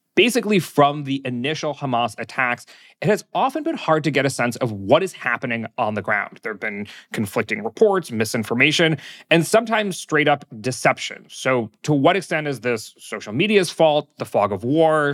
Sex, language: male, English